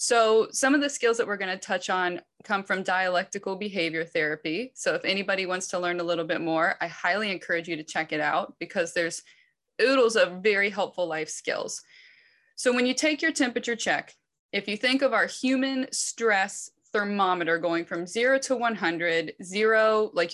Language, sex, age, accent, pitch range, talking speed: English, female, 20-39, American, 180-255 Hz, 185 wpm